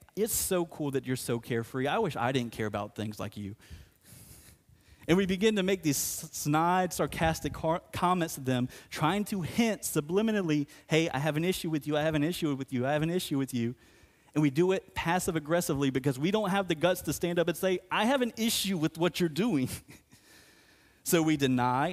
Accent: American